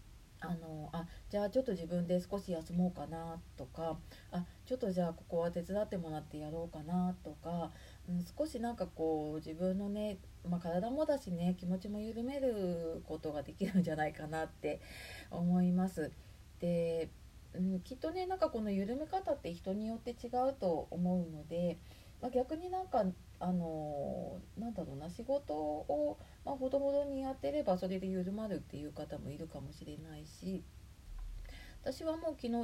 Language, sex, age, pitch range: Japanese, female, 30-49, 160-230 Hz